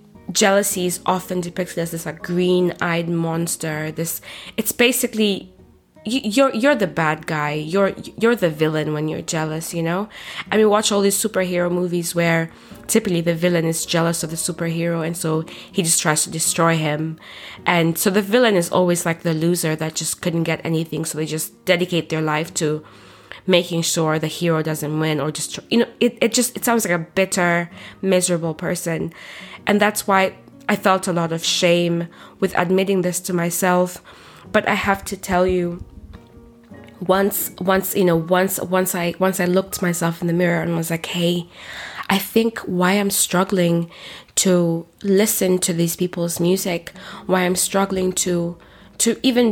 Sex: female